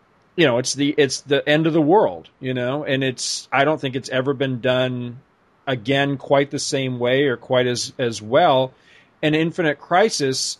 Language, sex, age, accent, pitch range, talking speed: English, male, 40-59, American, 125-155 Hz, 190 wpm